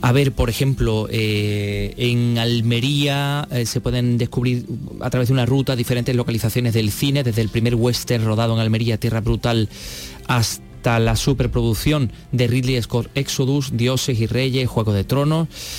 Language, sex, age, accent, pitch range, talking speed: Spanish, male, 30-49, Spanish, 115-140 Hz, 160 wpm